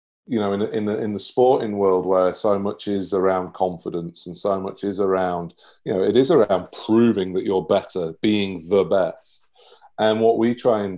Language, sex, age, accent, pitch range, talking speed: English, male, 40-59, British, 95-110 Hz, 195 wpm